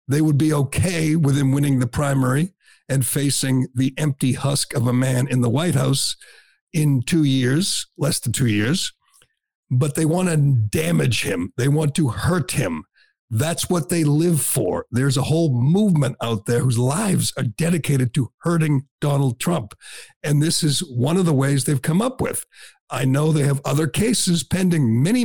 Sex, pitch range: male, 130-160 Hz